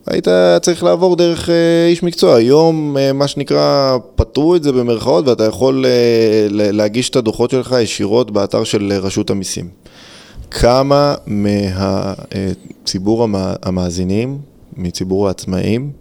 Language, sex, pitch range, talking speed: Hebrew, male, 100-135 Hz, 110 wpm